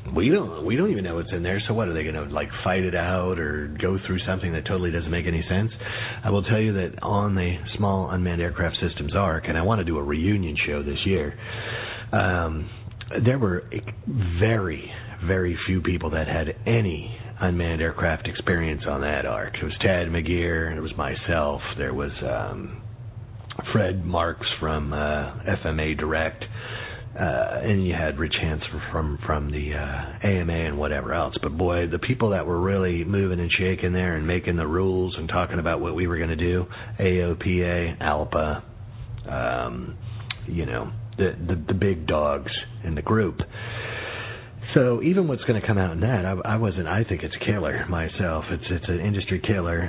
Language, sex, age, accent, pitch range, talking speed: English, male, 40-59, American, 85-110 Hz, 190 wpm